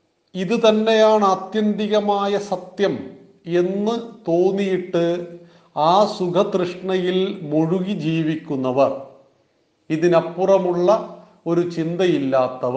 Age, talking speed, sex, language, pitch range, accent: 40-59, 60 wpm, male, Malayalam, 165-205 Hz, native